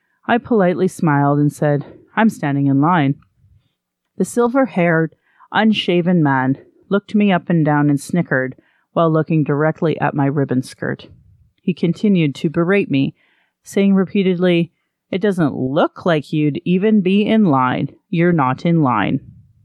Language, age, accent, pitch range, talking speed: English, 40-59, American, 140-185 Hz, 145 wpm